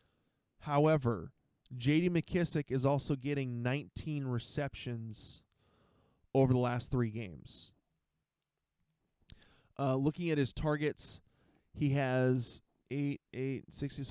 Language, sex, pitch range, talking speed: English, male, 120-145 Hz, 100 wpm